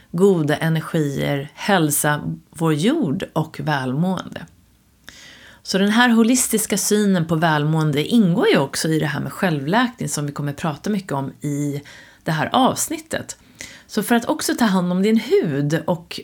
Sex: female